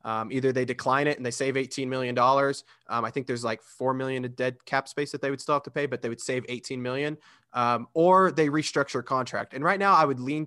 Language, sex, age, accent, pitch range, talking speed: English, male, 20-39, American, 120-145 Hz, 260 wpm